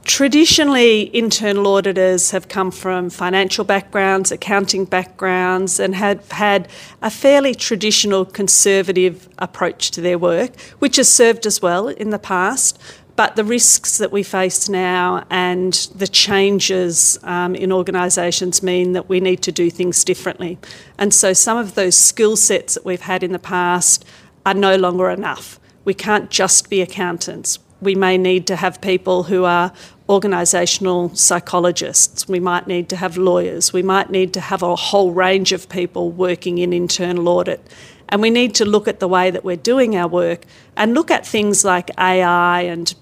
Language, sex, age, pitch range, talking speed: Arabic, female, 40-59, 180-200 Hz, 170 wpm